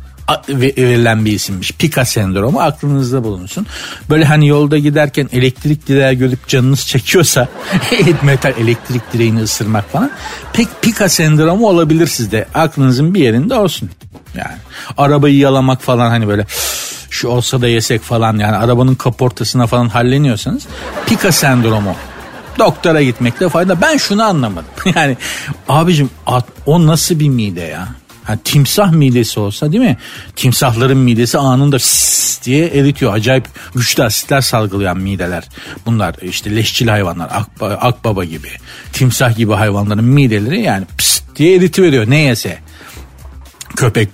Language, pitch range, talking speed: Turkish, 110-155 Hz, 130 wpm